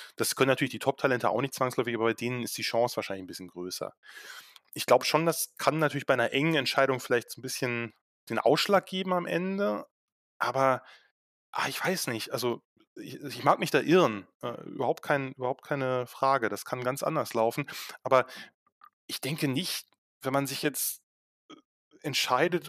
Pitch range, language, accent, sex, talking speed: 120-150 Hz, German, German, male, 175 wpm